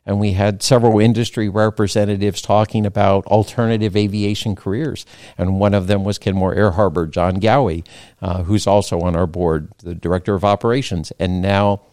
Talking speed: 165 wpm